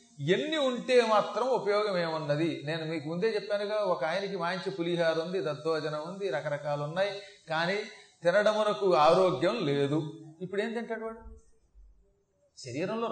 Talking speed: 125 wpm